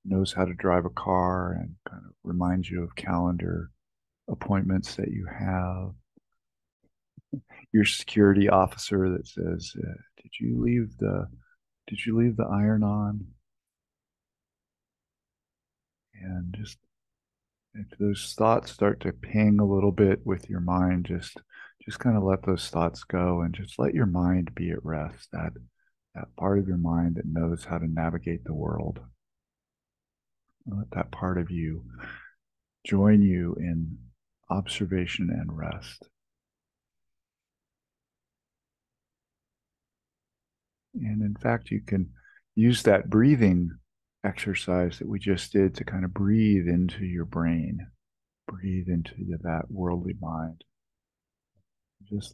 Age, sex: 50-69, male